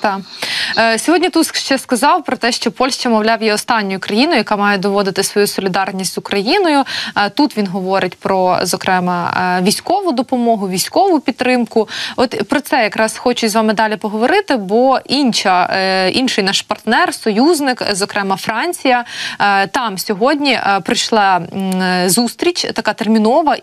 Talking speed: 130 wpm